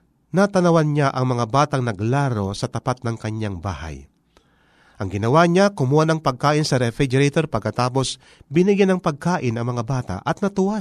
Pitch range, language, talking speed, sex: 115-165 Hz, Filipino, 155 wpm, male